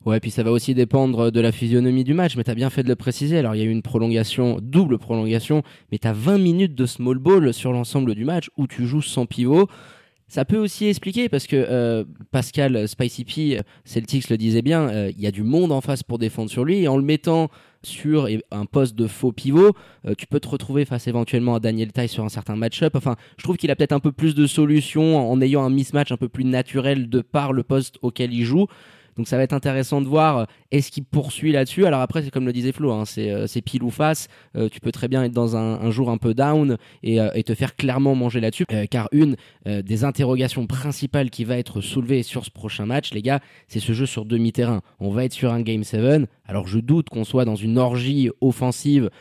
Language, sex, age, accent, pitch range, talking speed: French, male, 20-39, French, 115-140 Hz, 250 wpm